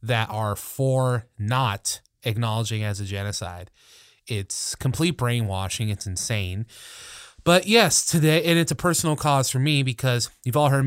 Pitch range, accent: 110-140 Hz, American